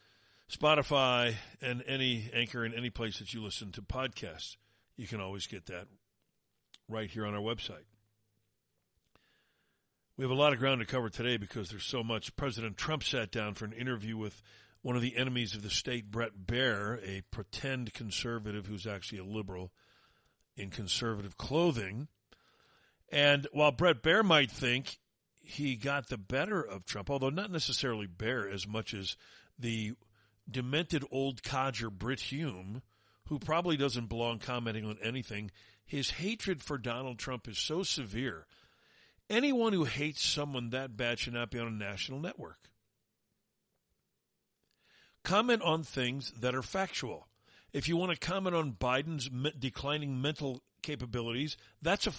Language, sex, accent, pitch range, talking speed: English, male, American, 110-145 Hz, 155 wpm